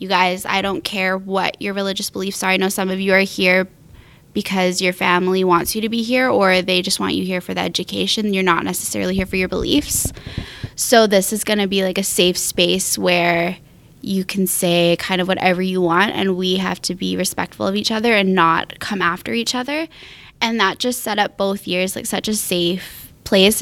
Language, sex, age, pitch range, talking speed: English, female, 10-29, 180-210 Hz, 220 wpm